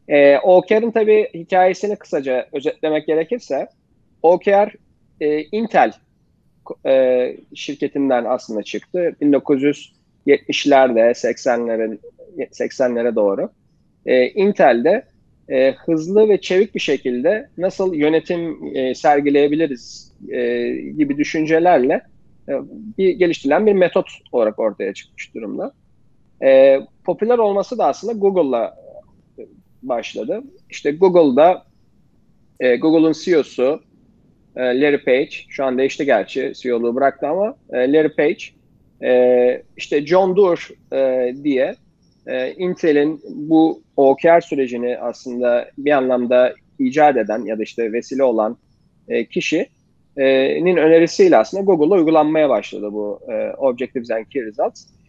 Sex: male